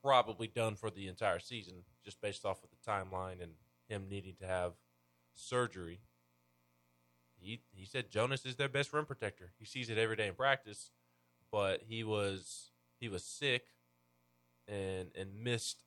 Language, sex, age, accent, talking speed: English, male, 20-39, American, 165 wpm